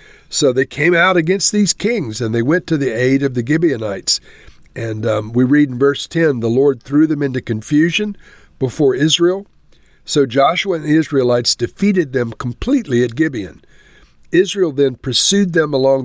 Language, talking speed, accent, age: English, 170 wpm, American, 60-79